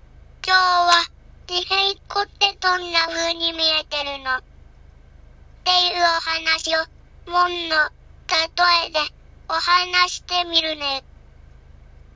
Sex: male